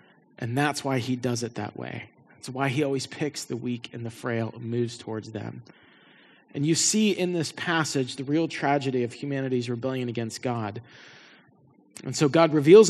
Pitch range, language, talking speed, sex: 135-185 Hz, English, 185 wpm, male